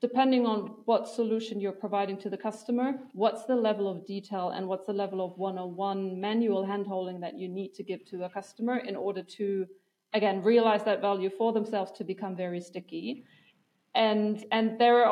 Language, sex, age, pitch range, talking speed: English, female, 40-59, 190-215 Hz, 195 wpm